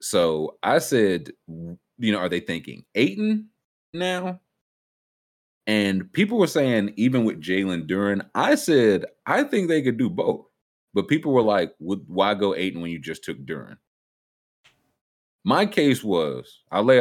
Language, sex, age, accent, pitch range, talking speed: English, male, 30-49, American, 80-110 Hz, 155 wpm